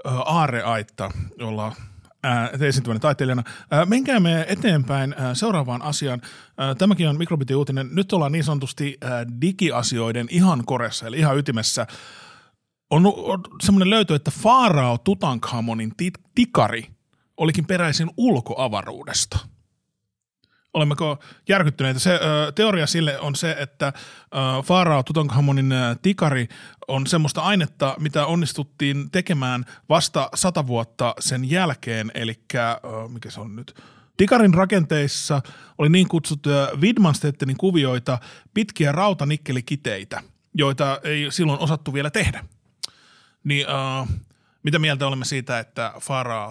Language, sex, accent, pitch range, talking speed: Finnish, male, native, 125-165 Hz, 115 wpm